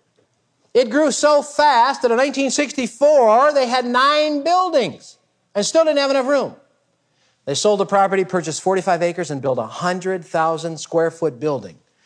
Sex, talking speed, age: male, 155 wpm, 50-69